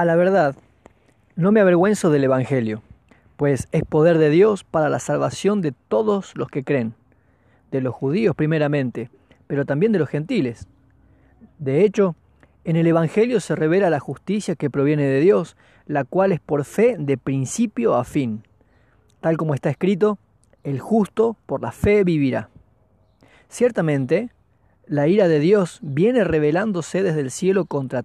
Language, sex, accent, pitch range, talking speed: Spanish, male, Argentinian, 130-185 Hz, 155 wpm